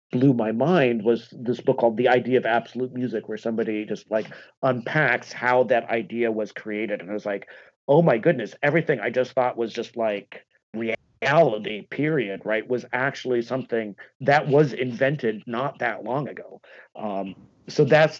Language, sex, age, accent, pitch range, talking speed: English, male, 40-59, American, 110-130 Hz, 170 wpm